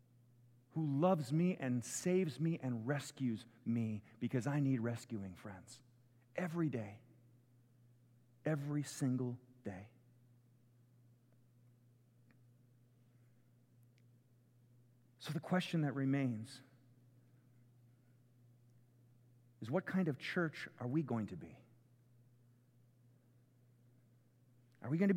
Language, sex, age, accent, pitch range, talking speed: English, male, 40-59, American, 120-130 Hz, 90 wpm